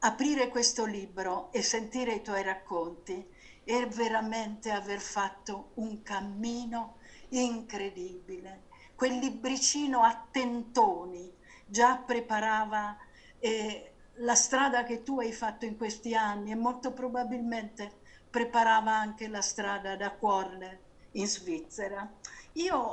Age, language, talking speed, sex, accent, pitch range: 50-69, Italian, 115 wpm, female, native, 210-265 Hz